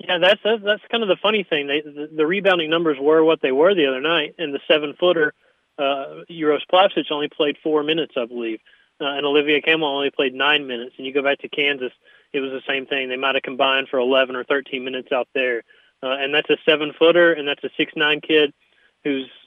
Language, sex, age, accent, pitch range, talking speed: English, male, 30-49, American, 135-155 Hz, 225 wpm